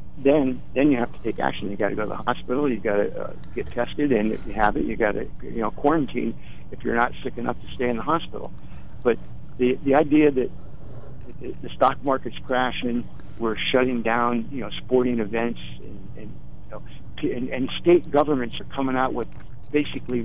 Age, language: 60-79, English